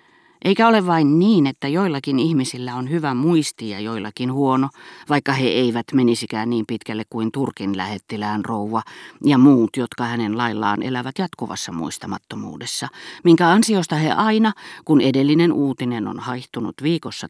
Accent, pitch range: native, 125-170 Hz